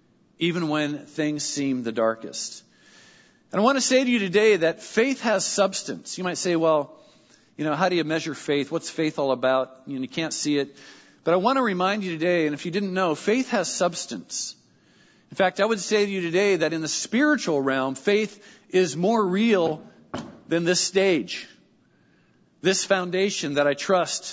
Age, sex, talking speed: 50-69, male, 190 wpm